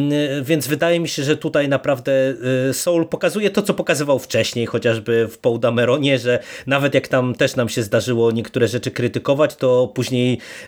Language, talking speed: Polish, 170 wpm